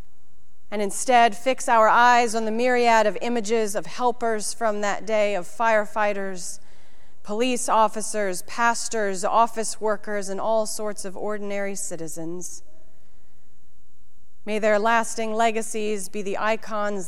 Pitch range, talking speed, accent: 180-225 Hz, 125 wpm, American